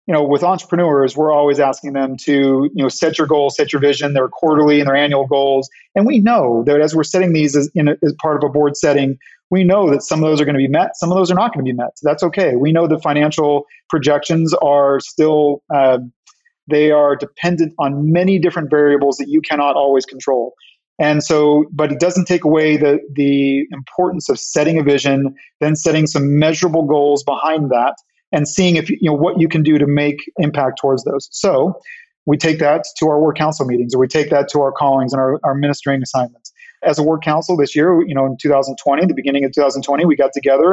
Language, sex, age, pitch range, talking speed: English, male, 40-59, 140-160 Hz, 230 wpm